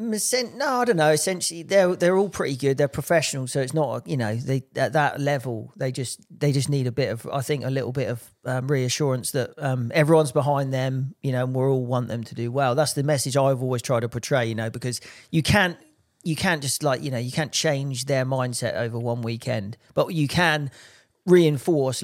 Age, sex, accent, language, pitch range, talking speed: 40-59, male, British, English, 130-155 Hz, 225 wpm